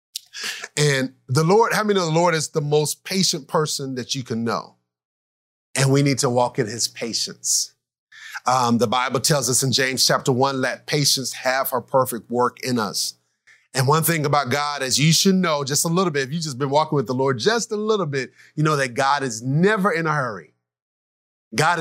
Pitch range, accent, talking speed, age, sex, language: 125-160 Hz, American, 210 wpm, 30-49, male, English